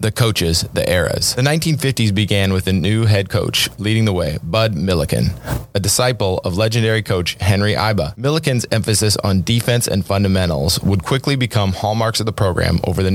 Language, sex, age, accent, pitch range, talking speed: English, male, 30-49, American, 95-120 Hz, 180 wpm